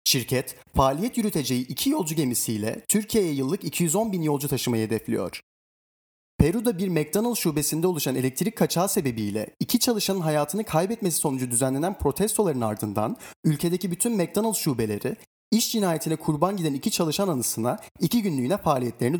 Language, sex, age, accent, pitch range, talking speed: Turkish, male, 30-49, native, 130-195 Hz, 135 wpm